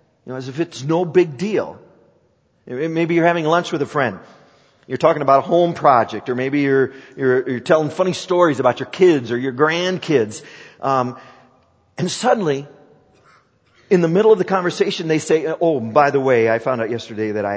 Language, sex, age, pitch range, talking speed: English, male, 40-59, 135-220 Hz, 190 wpm